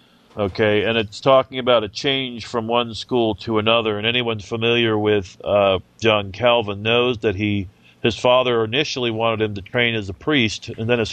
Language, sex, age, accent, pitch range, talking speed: English, male, 40-59, American, 105-120 Hz, 190 wpm